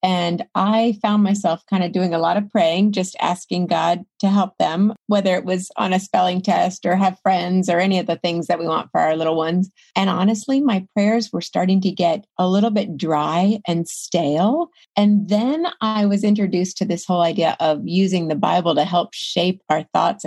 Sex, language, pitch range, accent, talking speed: female, English, 170-210 Hz, American, 210 wpm